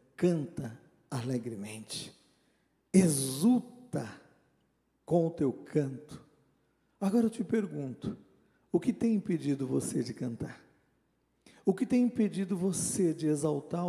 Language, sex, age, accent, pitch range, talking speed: Portuguese, male, 50-69, Brazilian, 155-230 Hz, 110 wpm